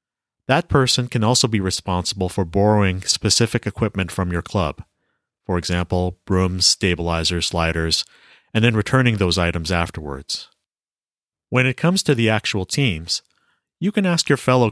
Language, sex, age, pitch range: English, male, 30-49, 90-120 Hz